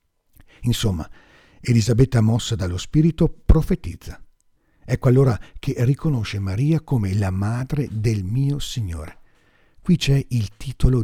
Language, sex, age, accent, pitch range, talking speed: Italian, male, 50-69, native, 95-135 Hz, 115 wpm